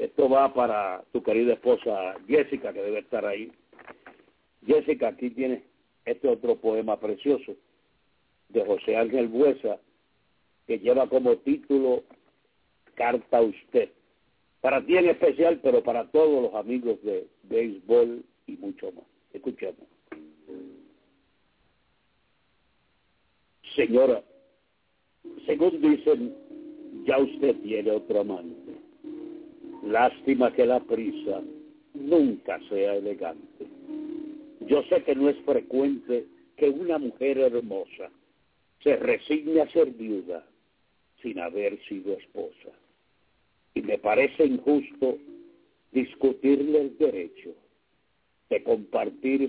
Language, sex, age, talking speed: English, male, 60-79, 105 wpm